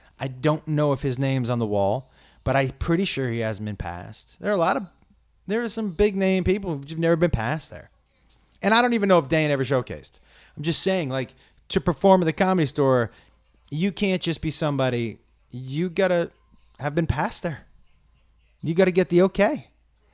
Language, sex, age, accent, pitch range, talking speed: English, male, 30-49, American, 110-170 Hz, 205 wpm